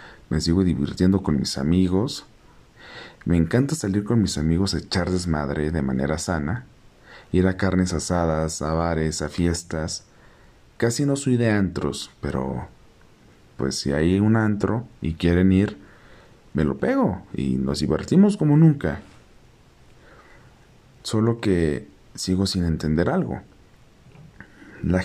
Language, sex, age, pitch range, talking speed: Spanish, male, 40-59, 80-115 Hz, 130 wpm